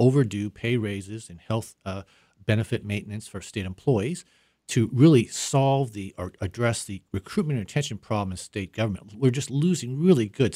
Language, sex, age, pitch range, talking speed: English, male, 40-59, 100-125 Hz, 170 wpm